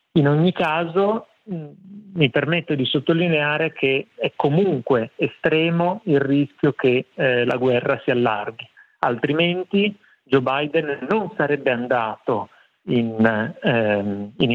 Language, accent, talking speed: Italian, native, 110 wpm